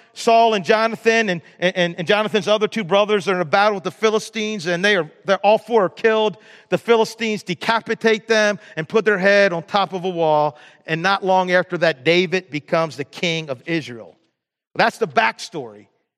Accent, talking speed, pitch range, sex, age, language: American, 195 wpm, 165-225 Hz, male, 40-59, English